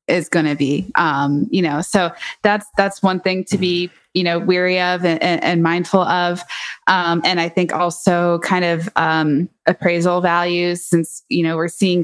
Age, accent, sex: 20-39, American, female